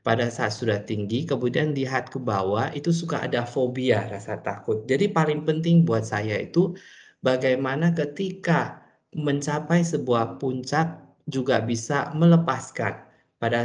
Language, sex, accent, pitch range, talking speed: Indonesian, male, native, 115-160 Hz, 130 wpm